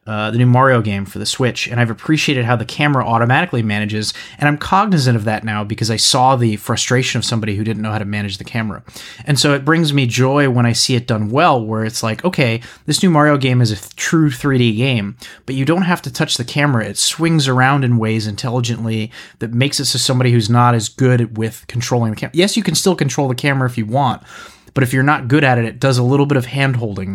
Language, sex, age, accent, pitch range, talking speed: English, male, 30-49, American, 110-135 Hz, 250 wpm